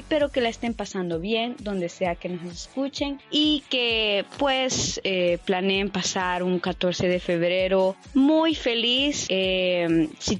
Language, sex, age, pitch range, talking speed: Spanish, female, 20-39, 185-245 Hz, 145 wpm